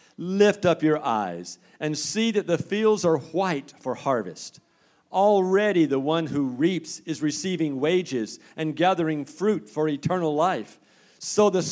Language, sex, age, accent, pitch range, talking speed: English, male, 50-69, American, 125-180 Hz, 150 wpm